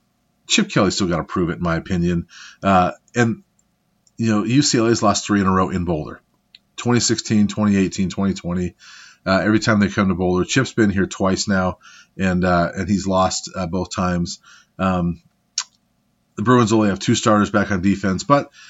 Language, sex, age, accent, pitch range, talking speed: English, male, 30-49, American, 90-110 Hz, 180 wpm